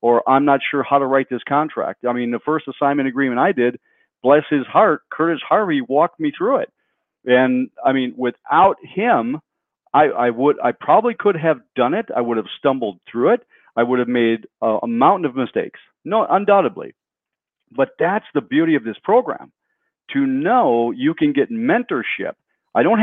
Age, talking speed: 50-69, 190 wpm